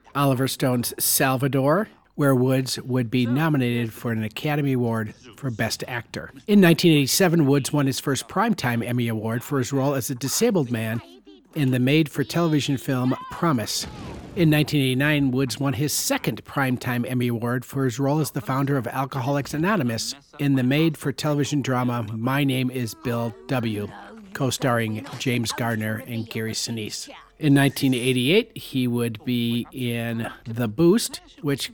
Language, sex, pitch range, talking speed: English, male, 120-145 Hz, 145 wpm